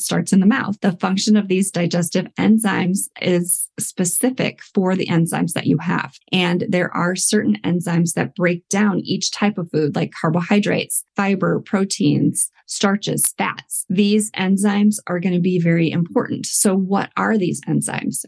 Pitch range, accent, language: 170-200 Hz, American, English